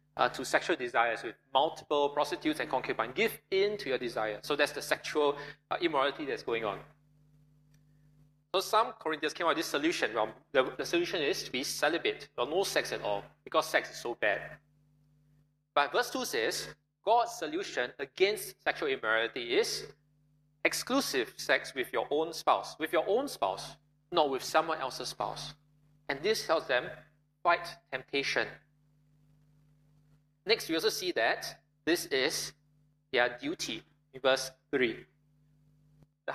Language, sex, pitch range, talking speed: English, male, 145-190 Hz, 150 wpm